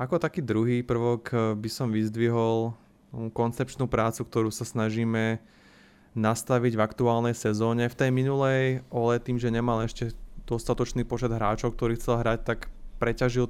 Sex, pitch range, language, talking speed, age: male, 110-120 Hz, Slovak, 140 wpm, 20-39